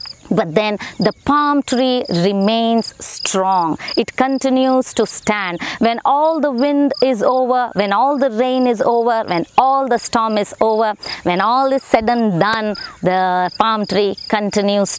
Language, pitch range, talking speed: English, 210-260 Hz, 155 wpm